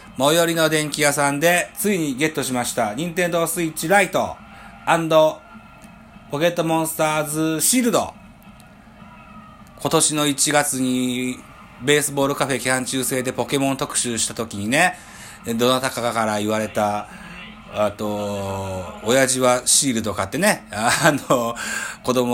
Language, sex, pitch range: Japanese, male, 110-170 Hz